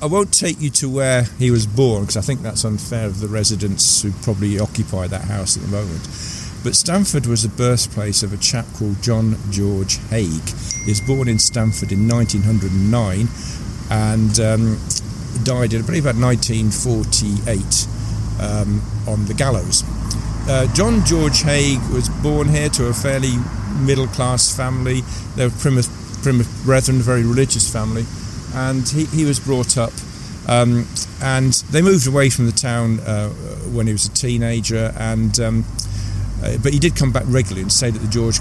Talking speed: 170 wpm